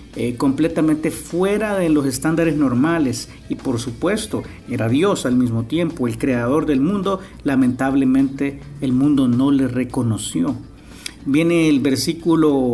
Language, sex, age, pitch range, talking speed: English, male, 50-69, 130-165 Hz, 125 wpm